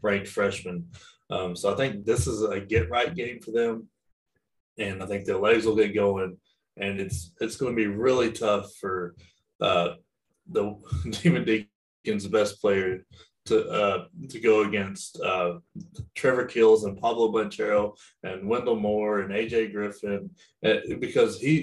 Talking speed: 155 wpm